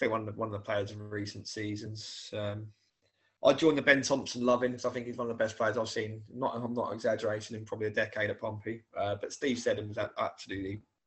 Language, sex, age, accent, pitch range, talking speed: English, male, 20-39, British, 110-140 Hz, 255 wpm